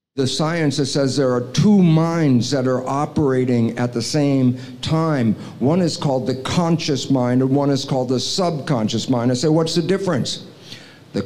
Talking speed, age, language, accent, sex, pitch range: 180 wpm, 50-69, English, American, male, 130-165 Hz